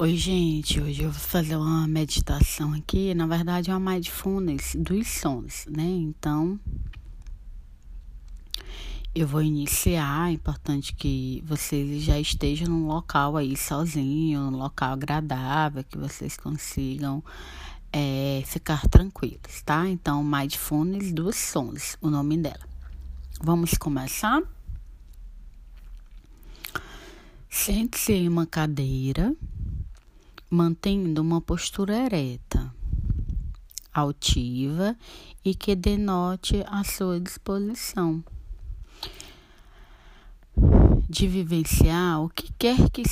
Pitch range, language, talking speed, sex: 130-175 Hz, Portuguese, 95 wpm, female